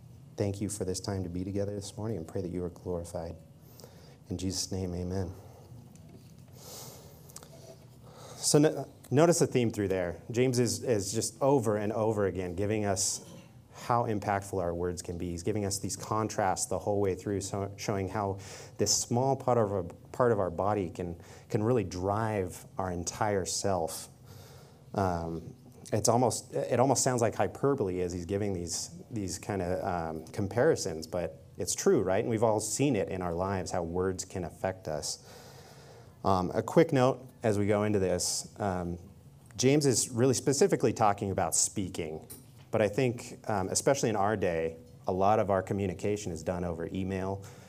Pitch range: 95-120 Hz